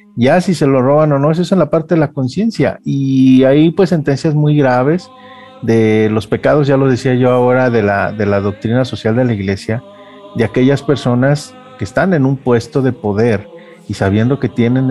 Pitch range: 120-150 Hz